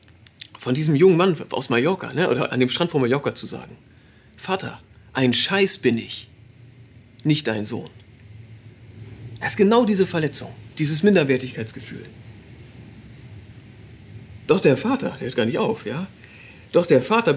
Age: 40-59